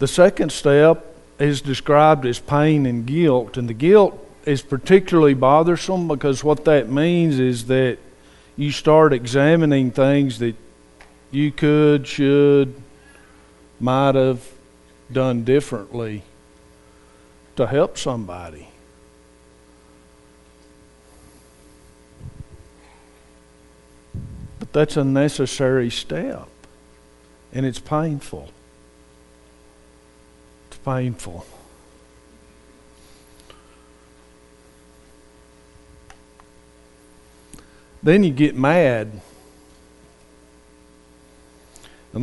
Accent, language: American, English